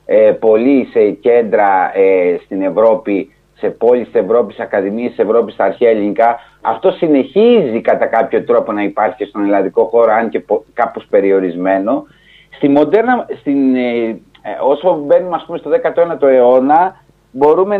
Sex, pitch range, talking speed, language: male, 125-180 Hz, 130 wpm, Greek